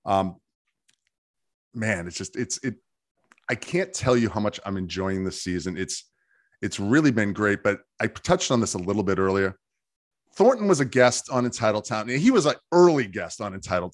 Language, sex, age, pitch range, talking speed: English, male, 30-49, 110-140 Hz, 195 wpm